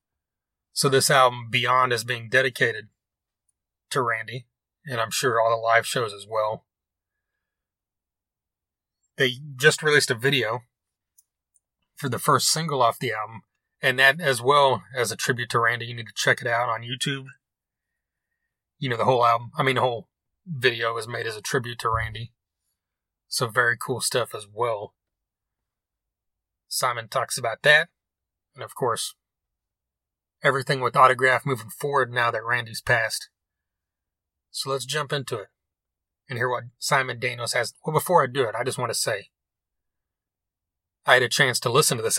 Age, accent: 30-49, American